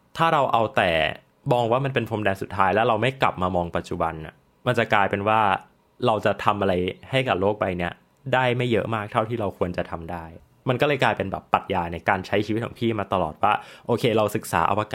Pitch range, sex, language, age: 95-120 Hz, male, Thai, 20-39